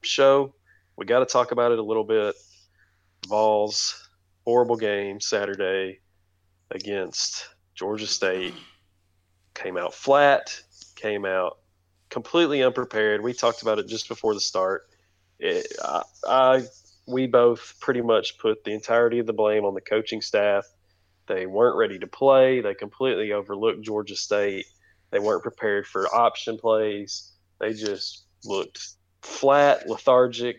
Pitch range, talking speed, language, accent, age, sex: 95-125 Hz, 135 wpm, English, American, 20-39, male